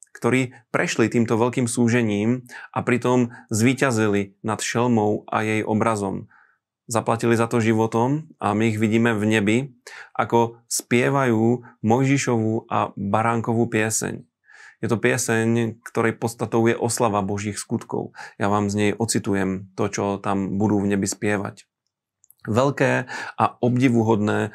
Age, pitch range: 30-49, 105-115 Hz